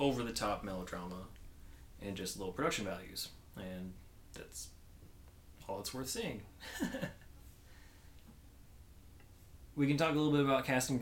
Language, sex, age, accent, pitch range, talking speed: English, male, 30-49, American, 95-130 Hz, 120 wpm